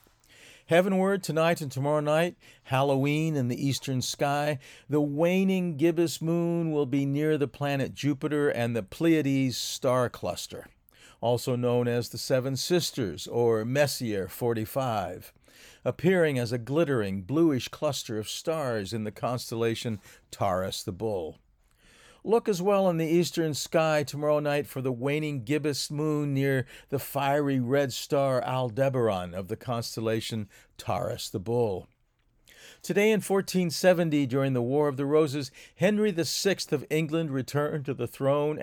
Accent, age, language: American, 50-69, English